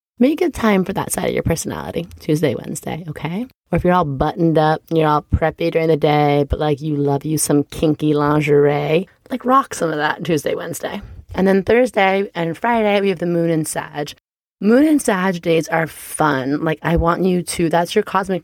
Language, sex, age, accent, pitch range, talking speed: English, female, 30-49, American, 155-195 Hz, 210 wpm